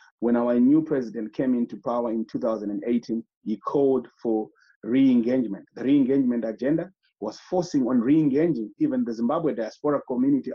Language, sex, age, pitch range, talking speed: English, male, 30-49, 115-145 Hz, 140 wpm